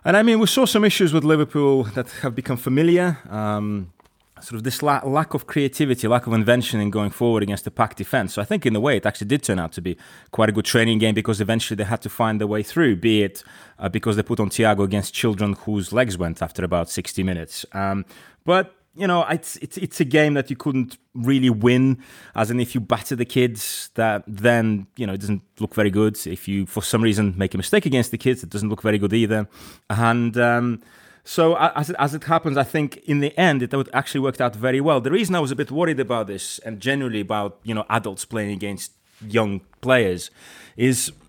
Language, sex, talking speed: English, male, 230 wpm